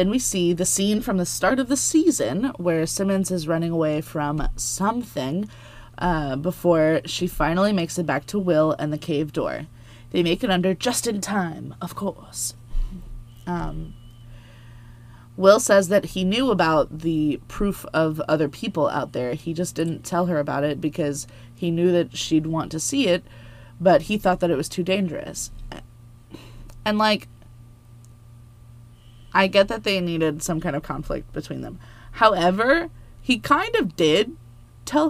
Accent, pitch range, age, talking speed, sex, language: American, 120-185 Hz, 20-39, 165 wpm, female, English